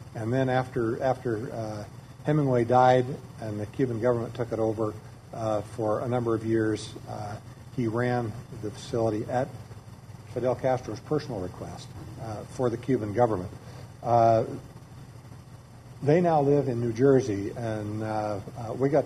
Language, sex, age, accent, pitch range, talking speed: English, male, 50-69, American, 110-130 Hz, 150 wpm